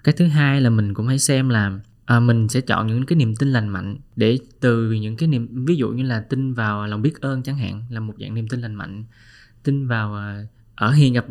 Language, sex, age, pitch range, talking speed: Vietnamese, male, 20-39, 110-140 Hz, 245 wpm